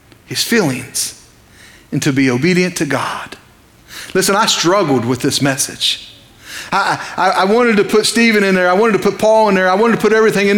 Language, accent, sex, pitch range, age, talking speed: English, American, male, 175-230 Hz, 40-59, 205 wpm